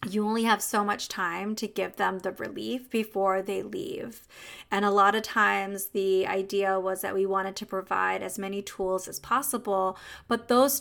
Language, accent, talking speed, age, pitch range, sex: English, American, 190 wpm, 20-39, 200-250 Hz, female